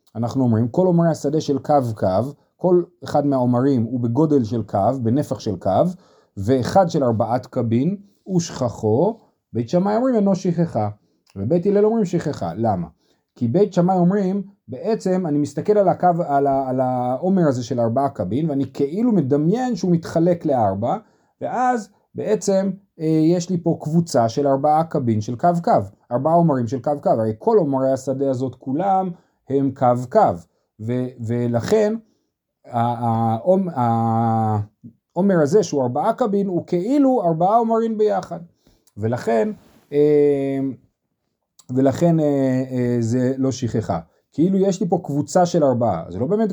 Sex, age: male, 30-49